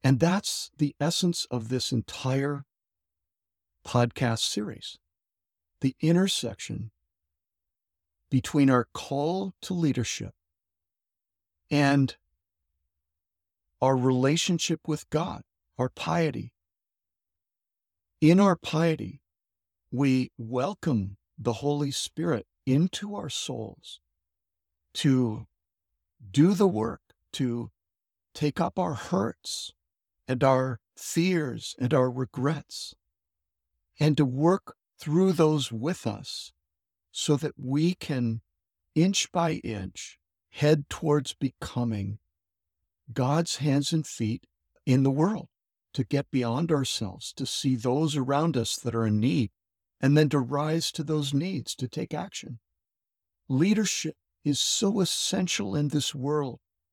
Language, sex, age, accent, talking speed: English, male, 50-69, American, 110 wpm